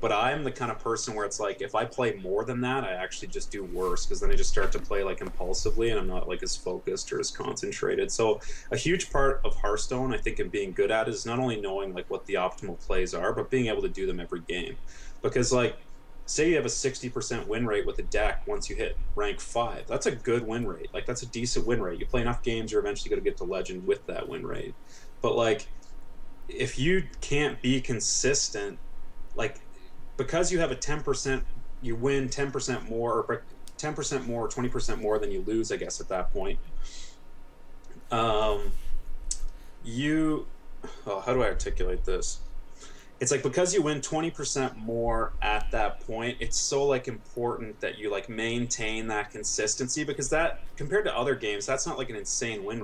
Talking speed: 205 wpm